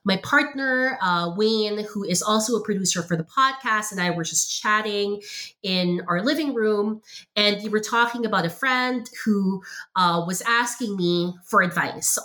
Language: English